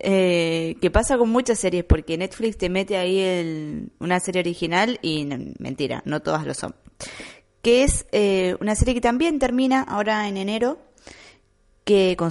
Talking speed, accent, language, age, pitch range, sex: 155 wpm, Argentinian, Spanish, 20-39, 165-205 Hz, female